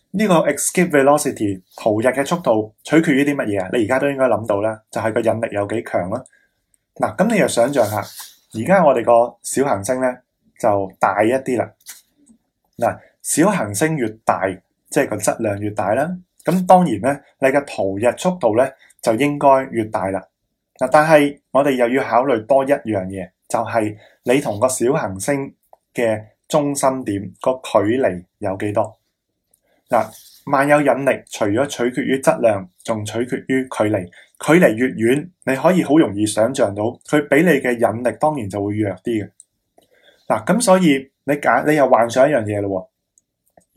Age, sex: 20-39, male